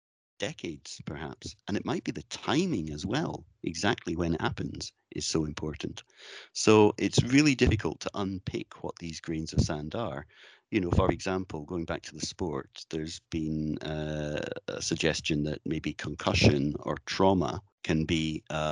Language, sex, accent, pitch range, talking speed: English, male, British, 80-95 Hz, 165 wpm